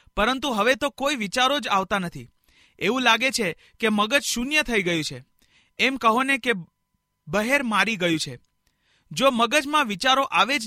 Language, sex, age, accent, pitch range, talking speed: Hindi, male, 40-59, native, 200-255 Hz, 135 wpm